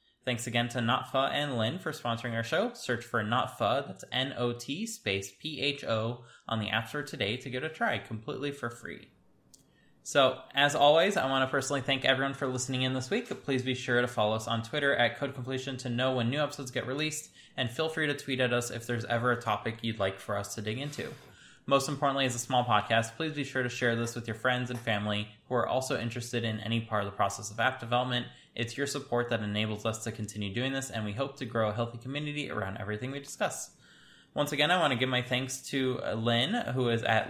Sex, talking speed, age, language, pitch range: male, 230 wpm, 10-29, English, 115-135 Hz